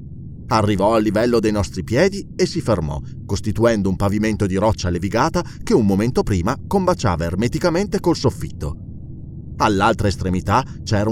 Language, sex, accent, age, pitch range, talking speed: Italian, male, native, 30-49, 105-165 Hz, 140 wpm